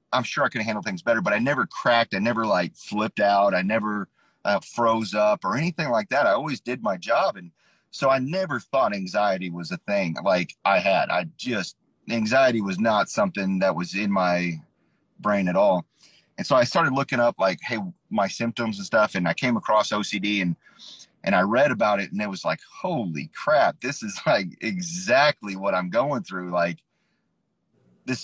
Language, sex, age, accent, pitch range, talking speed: English, male, 30-49, American, 95-125 Hz, 200 wpm